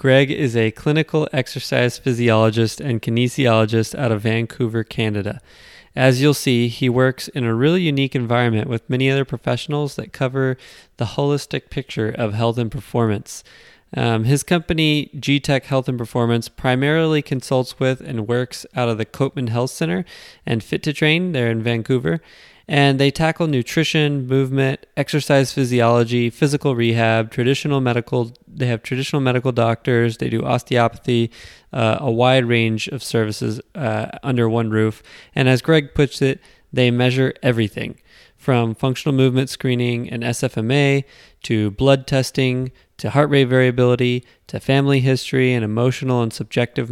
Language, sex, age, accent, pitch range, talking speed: English, male, 20-39, American, 115-140 Hz, 150 wpm